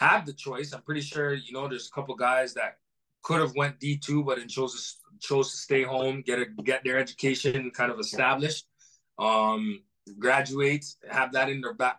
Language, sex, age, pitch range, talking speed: English, male, 20-39, 120-140 Hz, 200 wpm